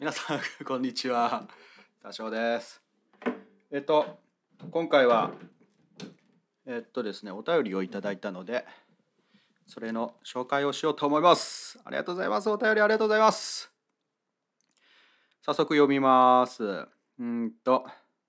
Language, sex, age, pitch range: Japanese, male, 30-49, 125-170 Hz